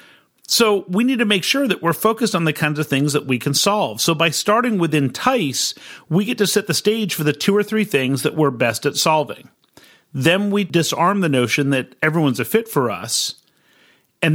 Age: 40-59